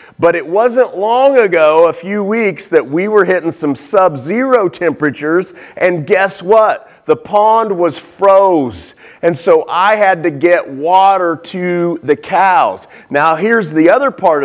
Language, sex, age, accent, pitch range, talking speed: English, male, 40-59, American, 160-210 Hz, 155 wpm